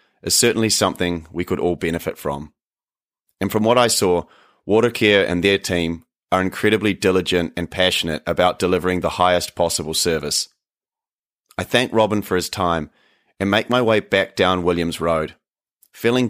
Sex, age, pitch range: male, 30-49, 90-110 Hz